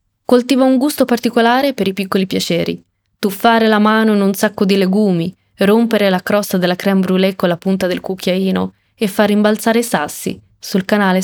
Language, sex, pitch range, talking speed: Italian, female, 175-220 Hz, 180 wpm